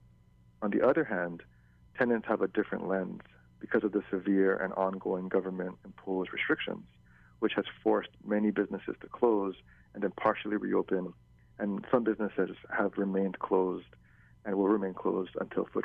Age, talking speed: 40-59, 155 wpm